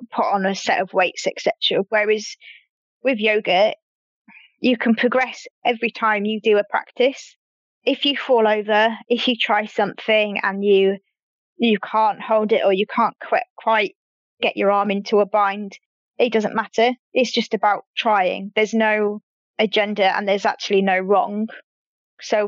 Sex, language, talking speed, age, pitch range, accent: female, English, 160 wpm, 20-39, 200-230 Hz, British